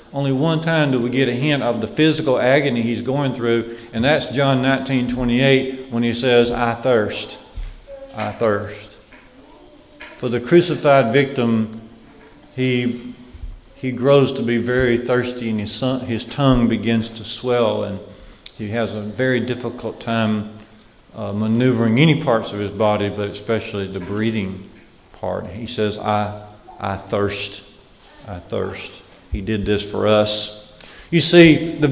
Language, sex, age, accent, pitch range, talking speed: English, male, 40-59, American, 115-150 Hz, 150 wpm